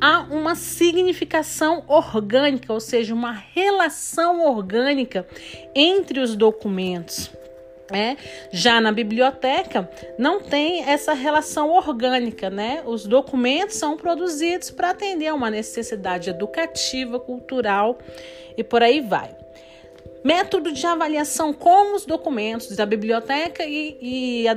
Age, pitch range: 40-59, 220-305 Hz